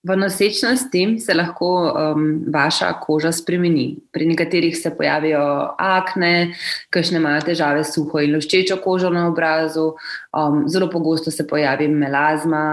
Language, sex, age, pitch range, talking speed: English, female, 20-39, 155-175 Hz, 130 wpm